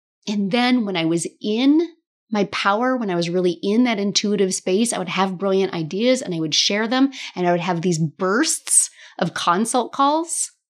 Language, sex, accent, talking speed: English, female, American, 195 wpm